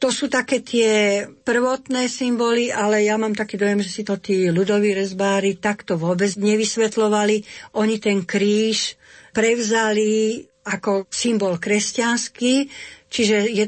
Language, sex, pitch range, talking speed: Slovak, female, 200-230 Hz, 125 wpm